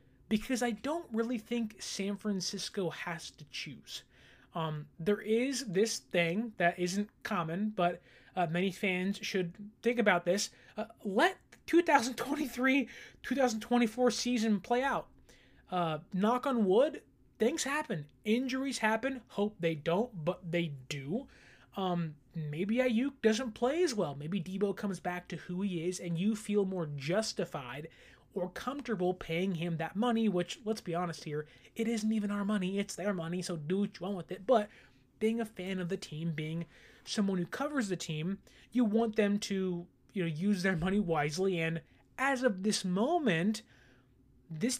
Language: English